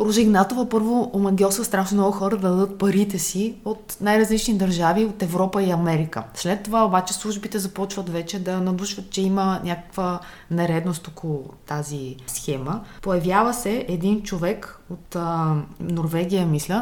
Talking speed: 145 wpm